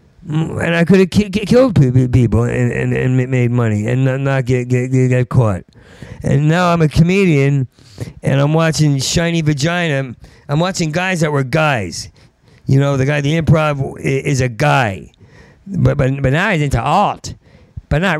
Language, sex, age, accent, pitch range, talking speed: English, male, 50-69, American, 115-145 Hz, 170 wpm